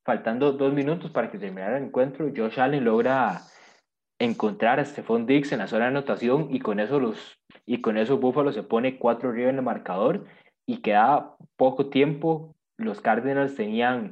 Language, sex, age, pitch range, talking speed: Spanish, male, 20-39, 115-145 Hz, 165 wpm